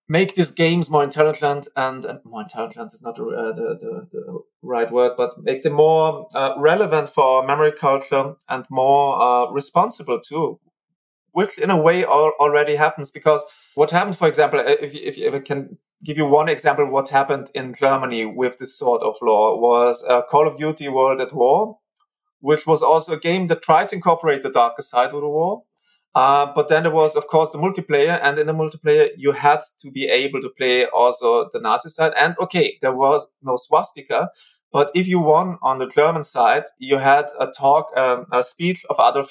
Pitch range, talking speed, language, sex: 135-165 Hz, 205 wpm, English, male